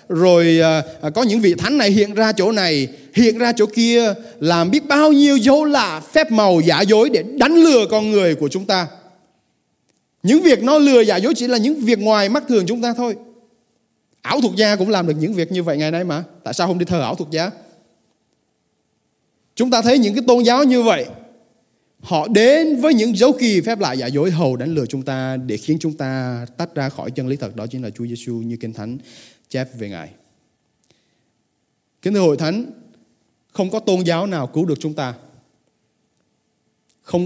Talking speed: 205 wpm